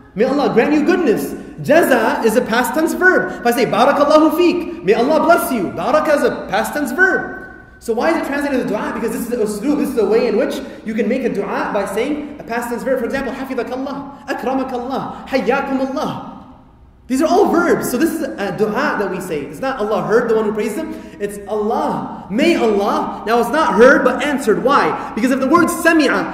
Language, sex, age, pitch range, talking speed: English, male, 30-49, 230-310 Hz, 230 wpm